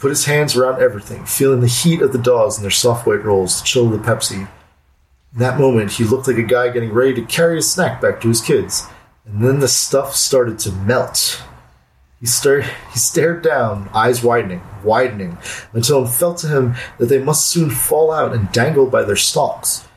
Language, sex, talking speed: English, male, 205 wpm